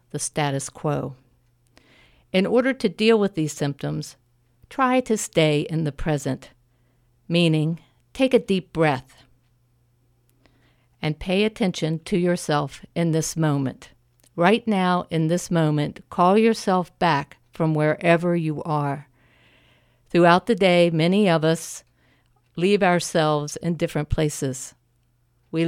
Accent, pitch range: American, 135-175 Hz